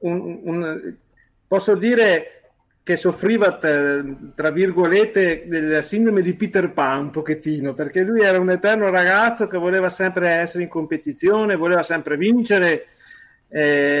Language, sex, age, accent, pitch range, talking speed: Italian, male, 50-69, native, 155-190 Hz, 135 wpm